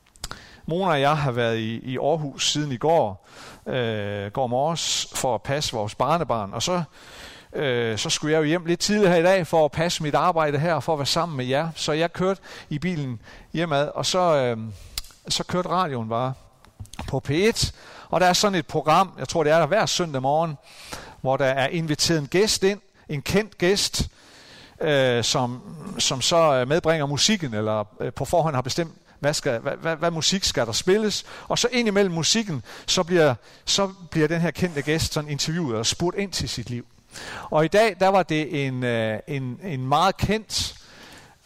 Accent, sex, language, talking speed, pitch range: native, male, Danish, 190 wpm, 125-175 Hz